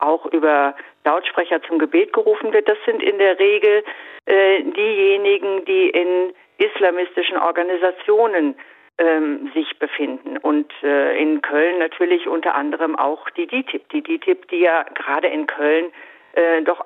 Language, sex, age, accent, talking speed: German, female, 50-69, German, 140 wpm